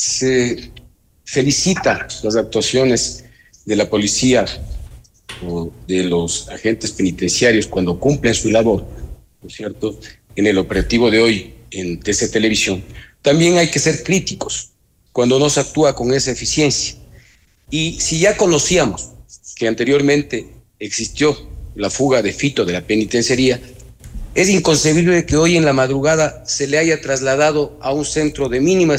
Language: Spanish